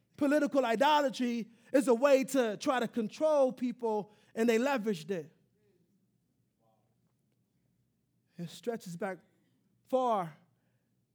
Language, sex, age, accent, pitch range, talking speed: English, male, 20-39, American, 170-240 Hz, 95 wpm